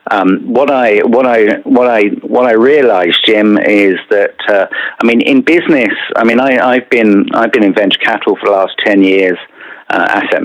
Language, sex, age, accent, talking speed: English, male, 50-69, British, 200 wpm